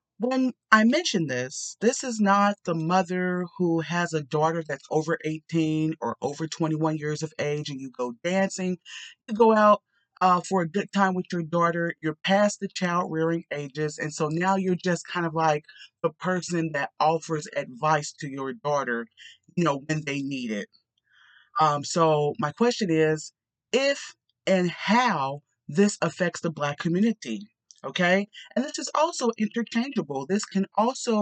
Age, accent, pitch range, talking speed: 40-59, American, 155-200 Hz, 165 wpm